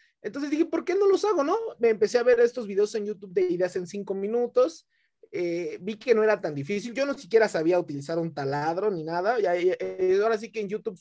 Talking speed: 245 wpm